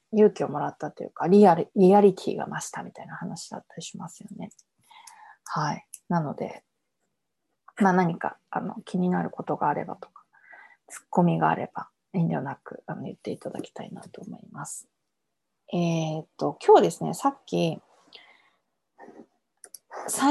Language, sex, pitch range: Japanese, female, 175-260 Hz